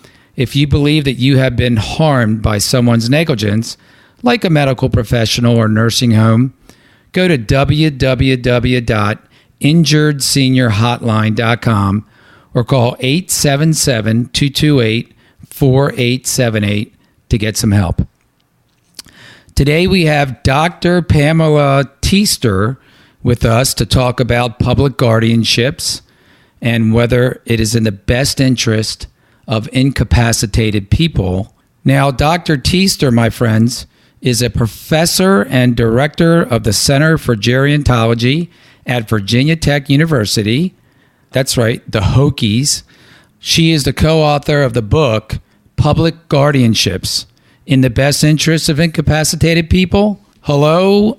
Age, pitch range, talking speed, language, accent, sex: 50-69, 115-150 Hz, 110 wpm, English, American, male